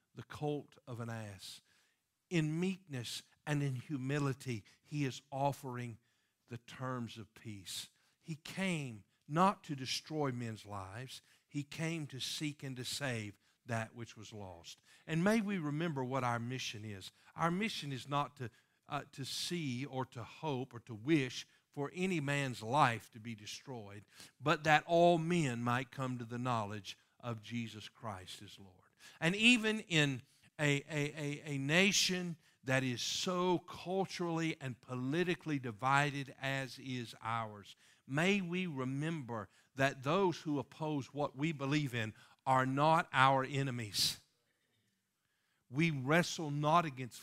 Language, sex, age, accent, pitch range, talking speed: English, male, 50-69, American, 120-155 Hz, 145 wpm